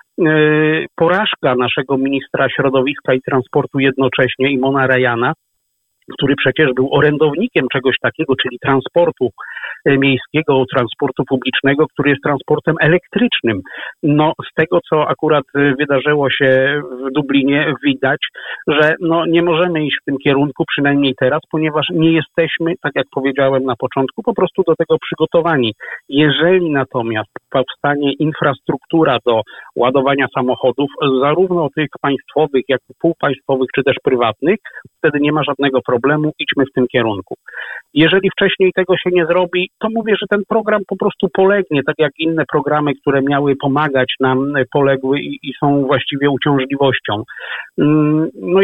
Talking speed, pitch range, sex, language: 140 wpm, 135-160 Hz, male, Polish